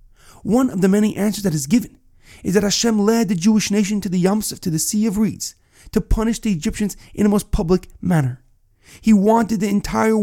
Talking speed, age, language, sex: 210 wpm, 30-49, English, male